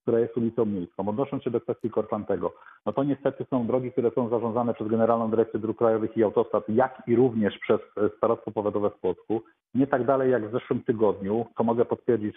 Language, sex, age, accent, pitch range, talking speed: Polish, male, 40-59, native, 110-125 Hz, 205 wpm